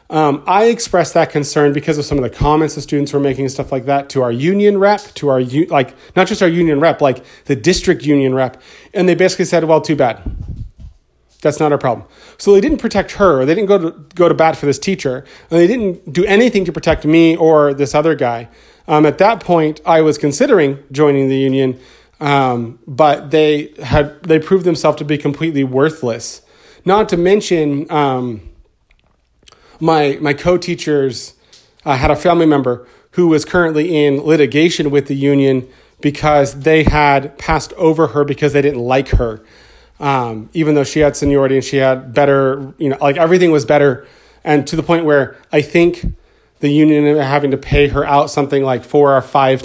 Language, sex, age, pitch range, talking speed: English, male, 30-49, 135-165 Hz, 195 wpm